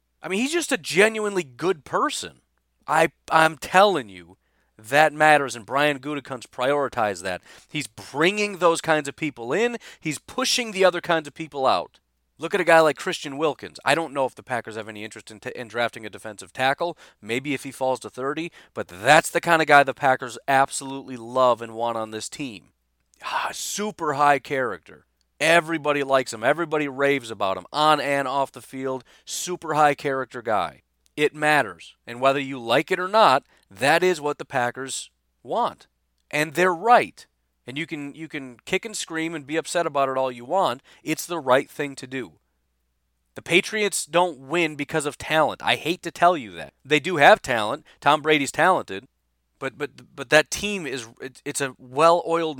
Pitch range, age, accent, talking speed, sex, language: 125-170 Hz, 30-49, American, 190 wpm, male, English